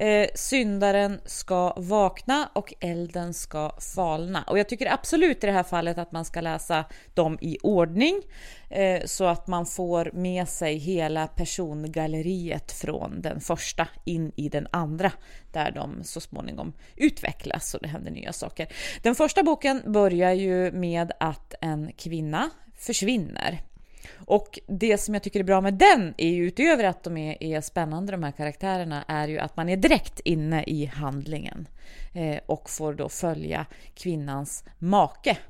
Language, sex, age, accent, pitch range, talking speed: English, female, 30-49, Swedish, 165-215 Hz, 155 wpm